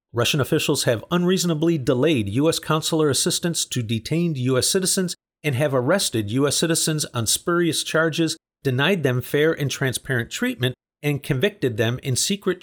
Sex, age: male, 50-69